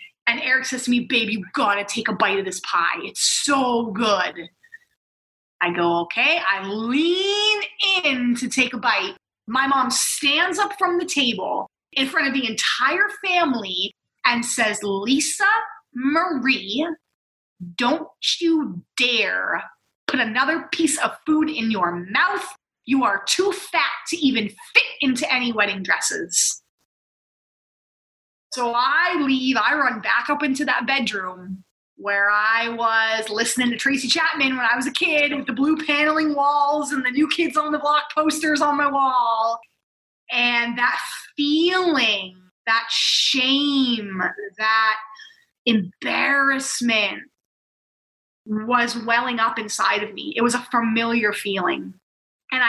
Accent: American